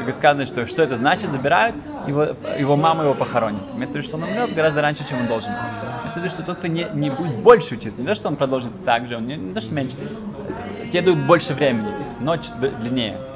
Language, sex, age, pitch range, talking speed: Russian, male, 20-39, 130-180 Hz, 205 wpm